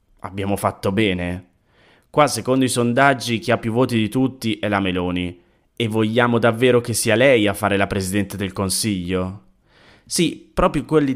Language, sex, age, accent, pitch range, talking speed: Italian, male, 20-39, native, 95-120 Hz, 165 wpm